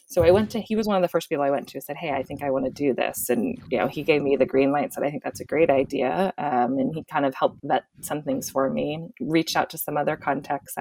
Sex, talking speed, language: female, 315 wpm, English